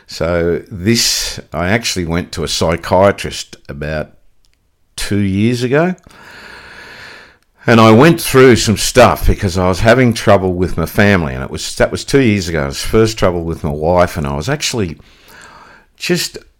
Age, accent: 50-69, Australian